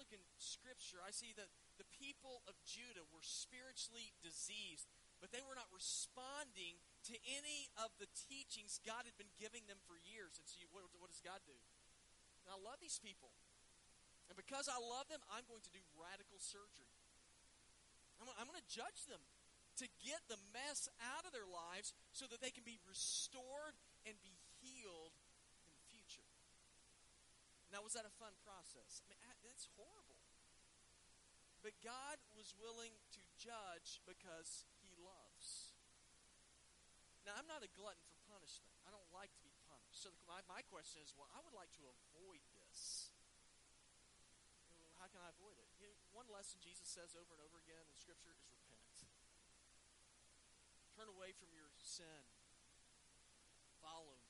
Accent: American